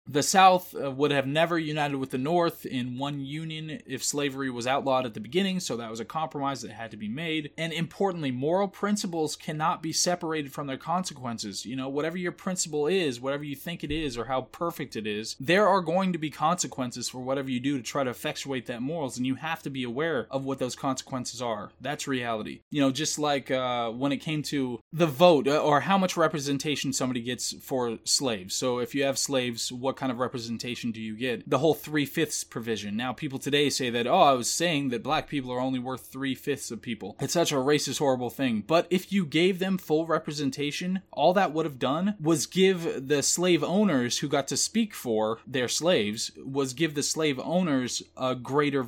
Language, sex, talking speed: English, male, 215 wpm